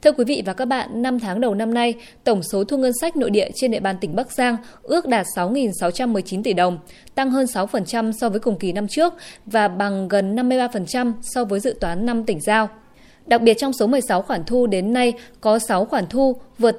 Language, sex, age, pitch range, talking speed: Vietnamese, female, 20-39, 205-260 Hz, 225 wpm